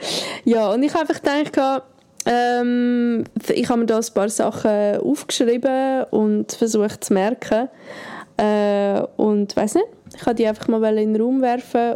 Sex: female